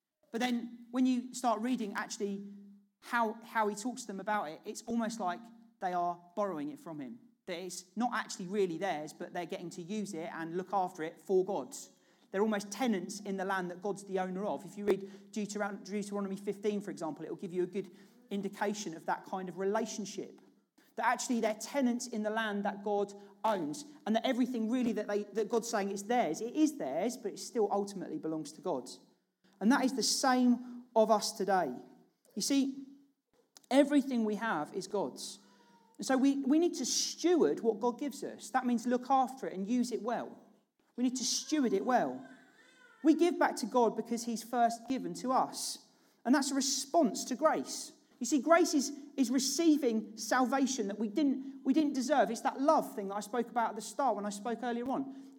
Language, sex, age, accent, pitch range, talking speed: English, male, 40-59, British, 200-265 Hz, 210 wpm